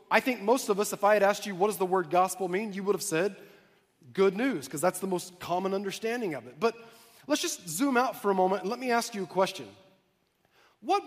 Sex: male